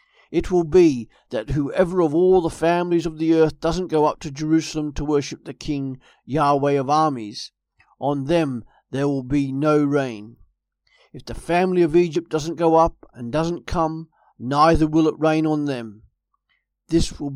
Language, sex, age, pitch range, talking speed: English, male, 50-69, 135-160 Hz, 175 wpm